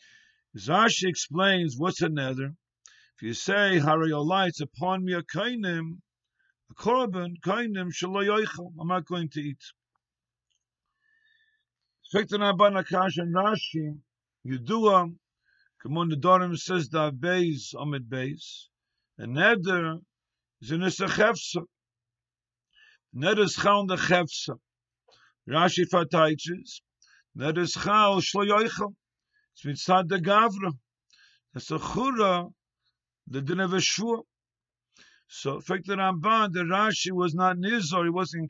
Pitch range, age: 150-195 Hz, 50-69